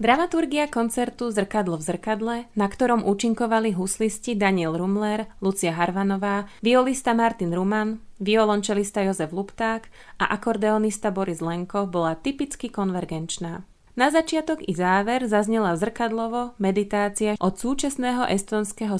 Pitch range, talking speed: 180-220 Hz, 115 wpm